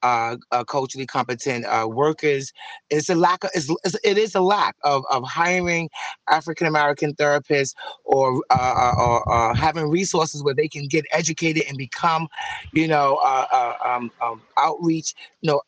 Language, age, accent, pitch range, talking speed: English, 30-49, American, 145-210 Hz, 170 wpm